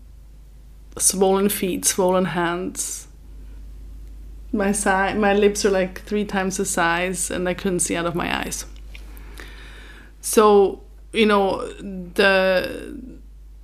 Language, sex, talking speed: English, female, 115 wpm